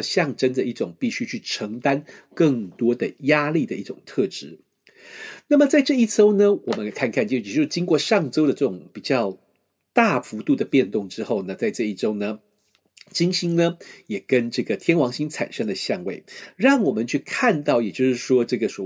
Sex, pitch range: male, 135-225 Hz